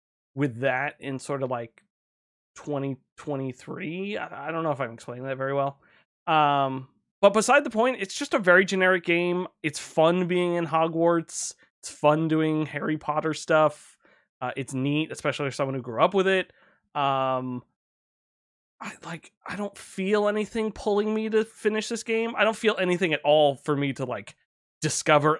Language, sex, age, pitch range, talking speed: English, male, 20-39, 125-170 Hz, 175 wpm